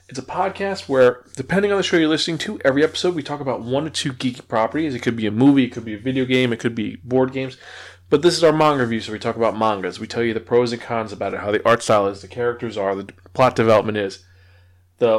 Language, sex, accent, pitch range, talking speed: English, male, American, 105-140 Hz, 275 wpm